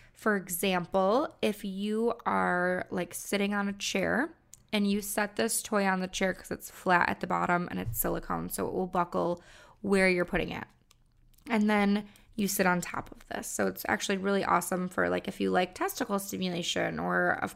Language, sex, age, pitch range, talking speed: English, female, 20-39, 180-215 Hz, 195 wpm